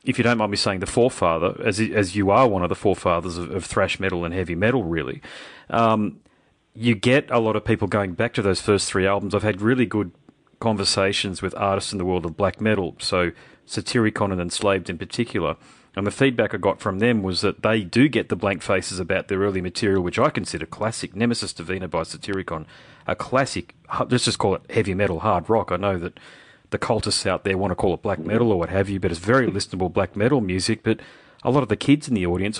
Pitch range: 95-110 Hz